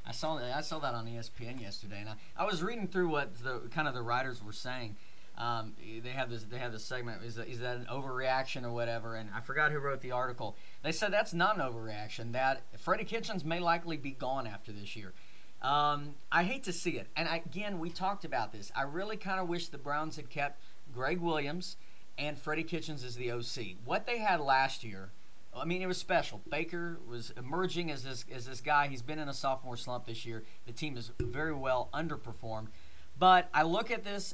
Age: 40-59